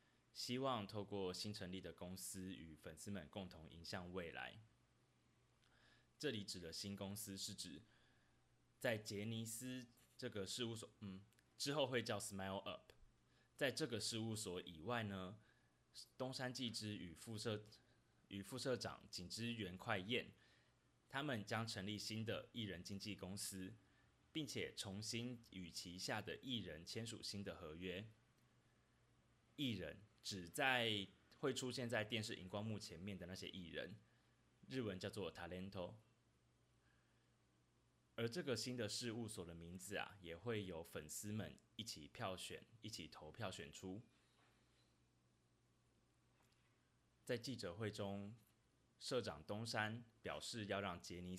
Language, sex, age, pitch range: Chinese, male, 20-39, 90-115 Hz